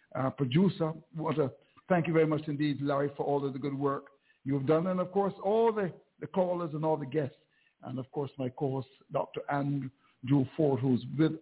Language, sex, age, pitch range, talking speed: English, male, 60-79, 145-195 Hz, 210 wpm